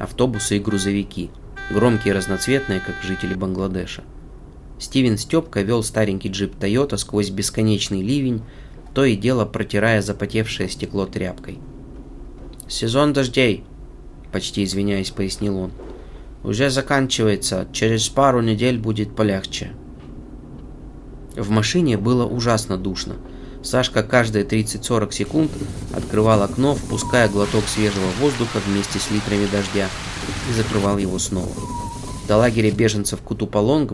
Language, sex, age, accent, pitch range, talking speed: Russian, male, 20-39, native, 100-120 Hz, 115 wpm